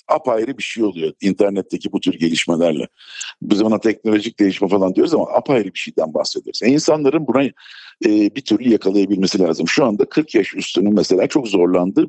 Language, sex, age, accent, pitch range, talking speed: Turkish, male, 50-69, native, 100-150 Hz, 170 wpm